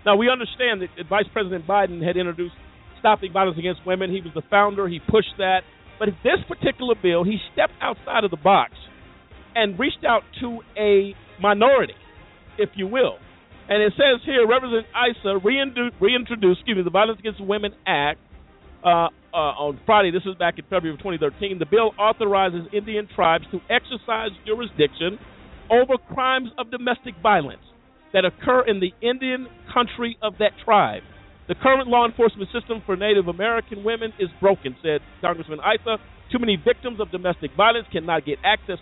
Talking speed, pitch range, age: 165 wpm, 185-245 Hz, 50-69